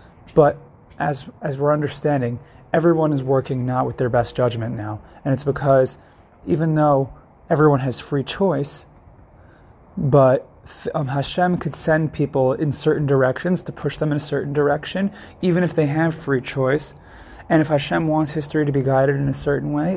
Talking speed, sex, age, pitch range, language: 170 wpm, male, 20-39, 125-155 Hz, English